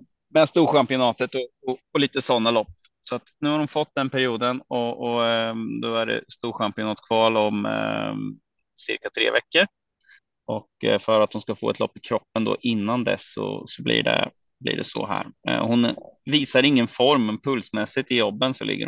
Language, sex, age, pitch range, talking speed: Swedish, male, 30-49, 110-135 Hz, 180 wpm